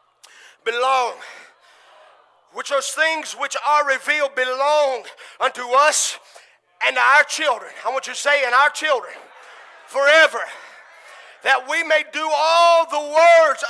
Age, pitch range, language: 40-59, 285-335 Hz, English